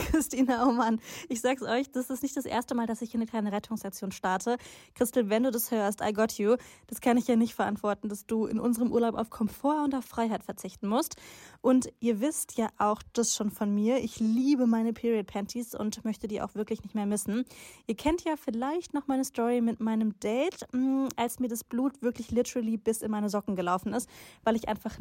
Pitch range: 215-250 Hz